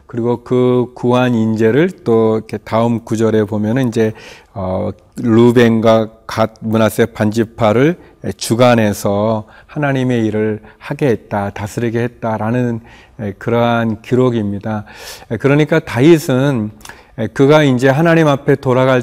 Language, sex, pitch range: Korean, male, 110-140 Hz